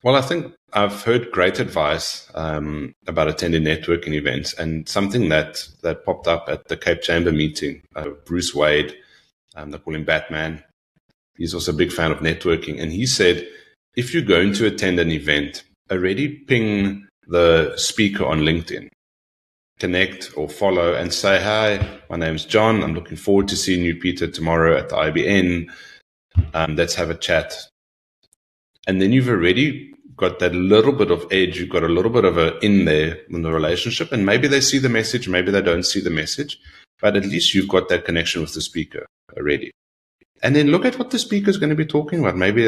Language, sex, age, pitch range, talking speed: English, male, 30-49, 85-115 Hz, 195 wpm